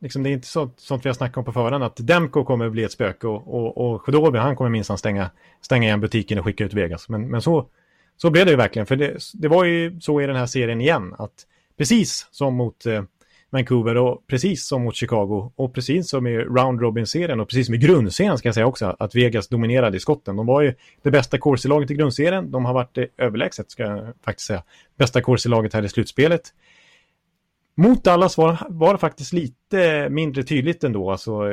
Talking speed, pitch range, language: 225 wpm, 115-150 Hz, Swedish